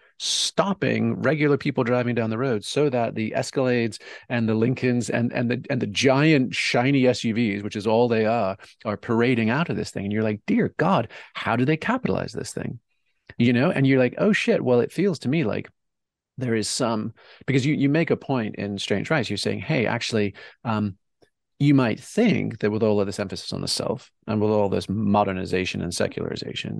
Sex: male